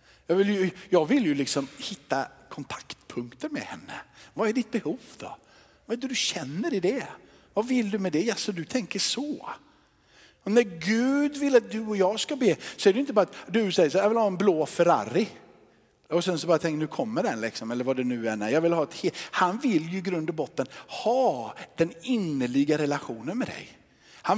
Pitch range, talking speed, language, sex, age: 165-245 Hz, 220 wpm, Swedish, male, 50-69